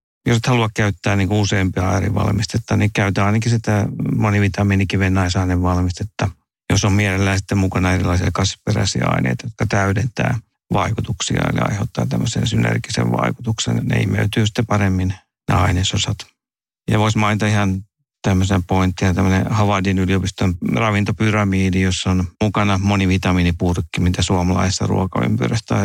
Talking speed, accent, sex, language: 120 wpm, Finnish, male, English